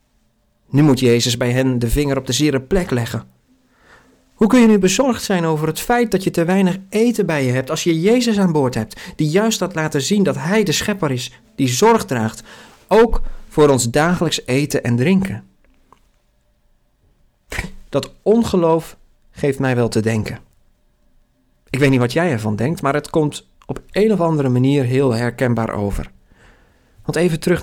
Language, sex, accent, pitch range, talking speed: Dutch, male, Dutch, 120-165 Hz, 180 wpm